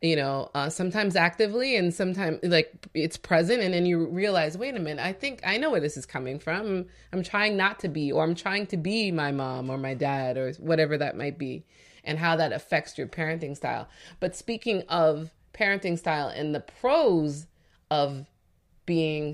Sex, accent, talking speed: female, American, 195 wpm